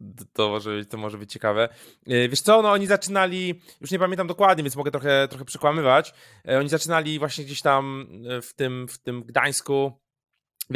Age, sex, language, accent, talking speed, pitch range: 20-39, male, Polish, native, 175 wpm, 140-165 Hz